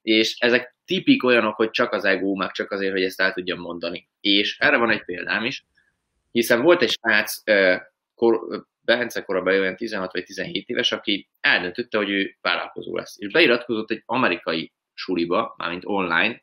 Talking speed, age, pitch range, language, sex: 170 wpm, 20-39, 95-115 Hz, Hungarian, male